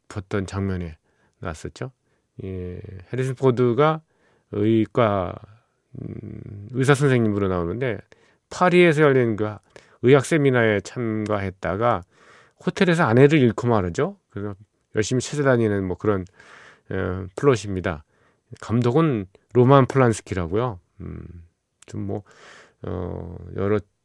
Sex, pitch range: male, 95-125 Hz